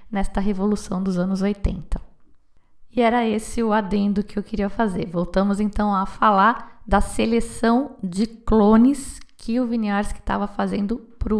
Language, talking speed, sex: Portuguese, 145 wpm, female